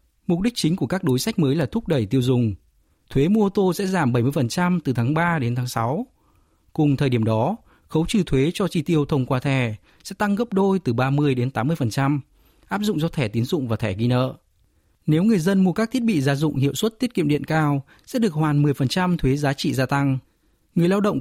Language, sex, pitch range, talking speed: Vietnamese, male, 125-175 Hz, 240 wpm